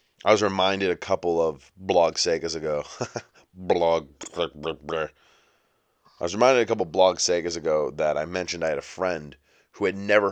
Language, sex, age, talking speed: English, male, 30-49, 170 wpm